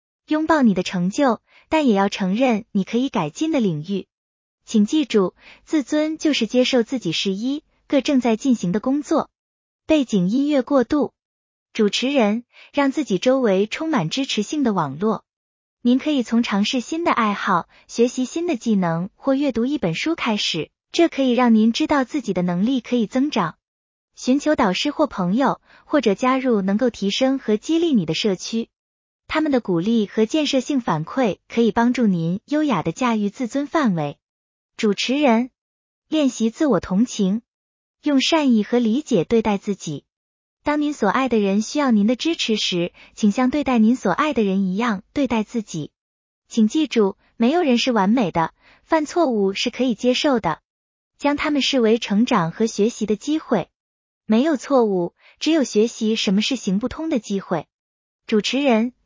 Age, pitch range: 20-39, 205-275 Hz